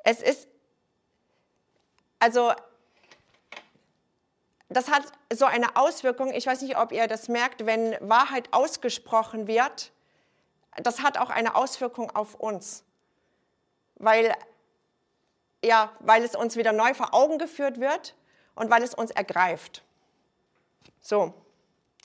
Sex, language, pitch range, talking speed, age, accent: female, German, 230-280 Hz, 115 wpm, 40-59, German